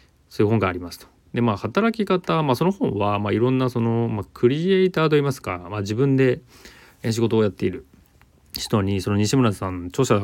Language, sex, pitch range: Japanese, male, 95-125 Hz